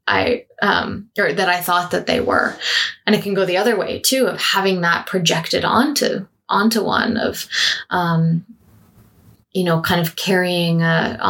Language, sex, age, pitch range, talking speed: English, female, 20-39, 165-195 Hz, 170 wpm